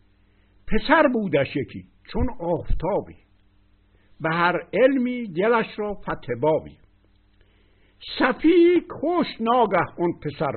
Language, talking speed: Persian, 90 wpm